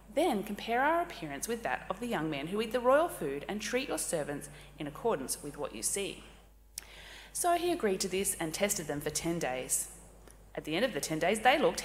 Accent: Australian